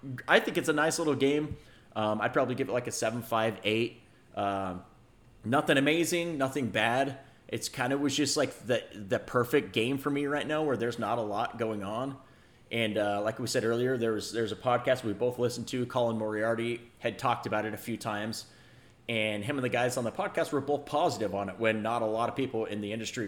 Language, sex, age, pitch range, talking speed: English, male, 30-49, 110-140 Hz, 240 wpm